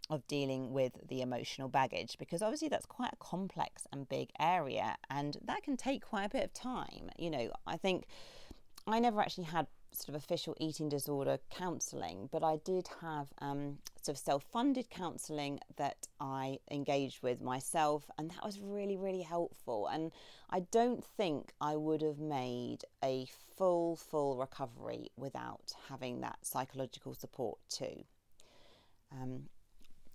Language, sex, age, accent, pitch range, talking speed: English, female, 40-59, British, 135-185 Hz, 155 wpm